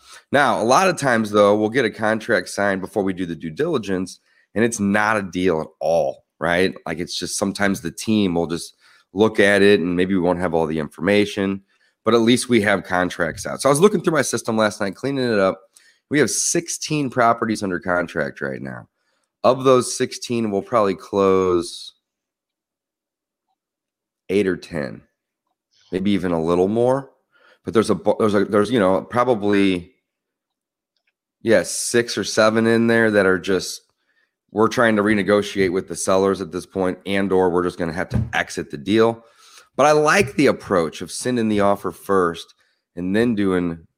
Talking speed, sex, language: 185 wpm, male, English